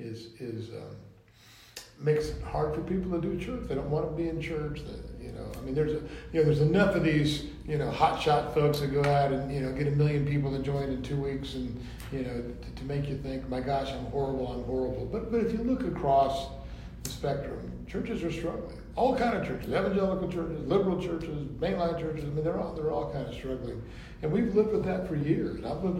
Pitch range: 125-155 Hz